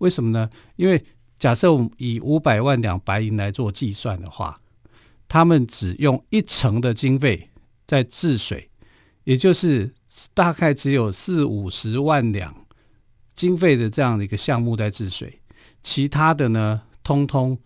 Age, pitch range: 50-69, 105-145 Hz